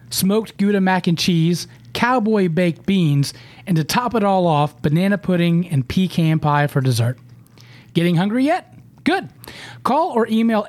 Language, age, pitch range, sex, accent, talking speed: English, 30-49, 140-205 Hz, male, American, 155 wpm